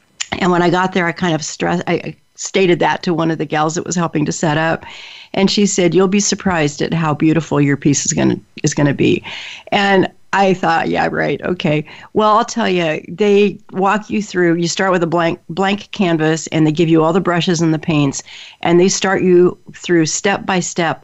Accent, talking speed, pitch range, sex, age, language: American, 225 wpm, 160-190 Hz, female, 50-69, English